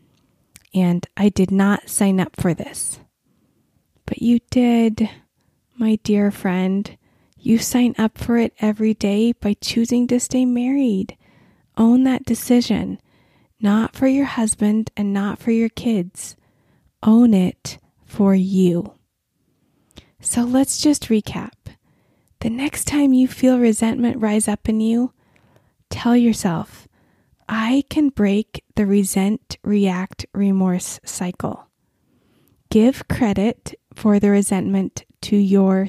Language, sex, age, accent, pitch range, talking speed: English, female, 20-39, American, 190-235 Hz, 120 wpm